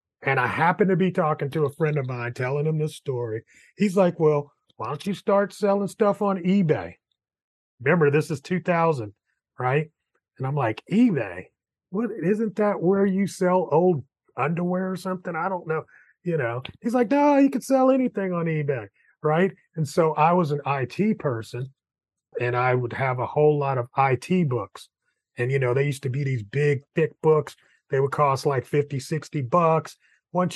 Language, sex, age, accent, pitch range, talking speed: English, male, 30-49, American, 130-180 Hz, 190 wpm